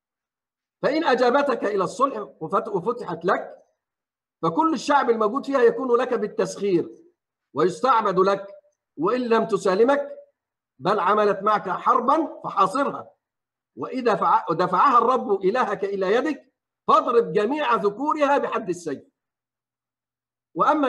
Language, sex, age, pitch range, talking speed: Arabic, male, 50-69, 190-285 Hz, 100 wpm